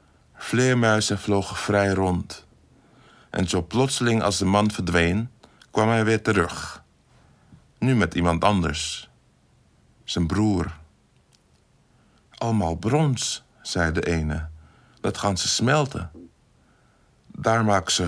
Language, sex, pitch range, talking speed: Dutch, male, 85-110 Hz, 110 wpm